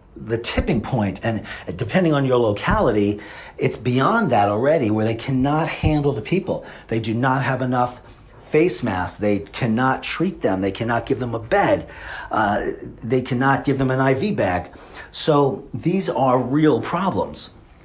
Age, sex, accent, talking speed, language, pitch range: 40-59, male, American, 160 wpm, English, 110-145 Hz